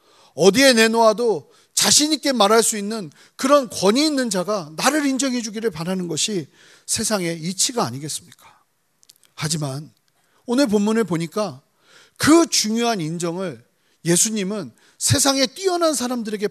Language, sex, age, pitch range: Korean, male, 40-59, 165-245 Hz